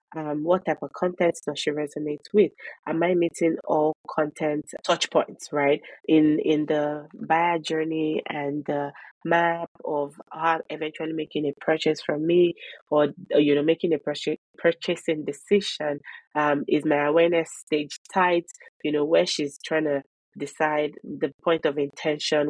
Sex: female